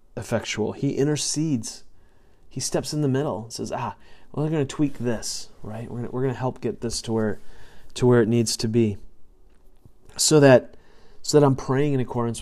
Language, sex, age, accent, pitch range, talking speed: English, male, 30-49, American, 110-135 Hz, 210 wpm